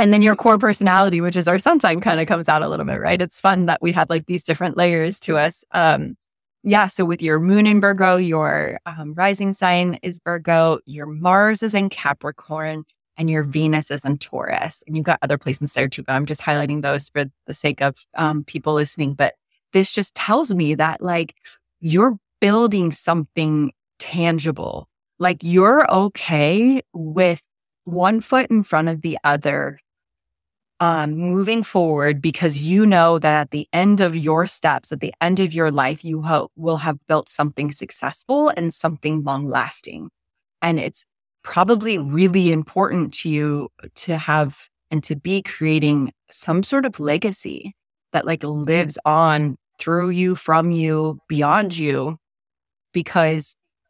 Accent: American